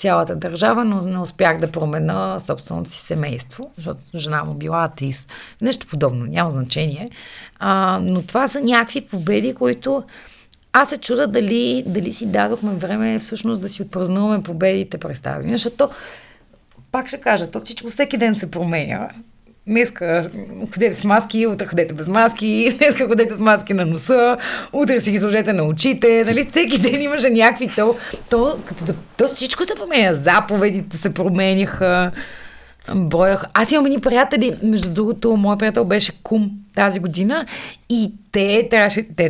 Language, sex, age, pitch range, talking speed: Bulgarian, female, 30-49, 180-235 Hz, 155 wpm